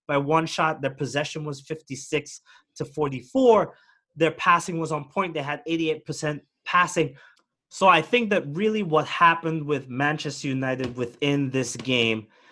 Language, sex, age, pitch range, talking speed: English, male, 30-49, 140-165 Hz, 150 wpm